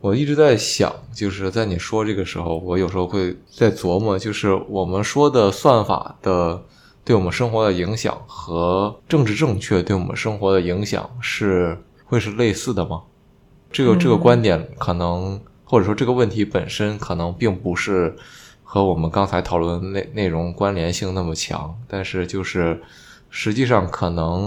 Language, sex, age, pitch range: Chinese, male, 20-39, 90-110 Hz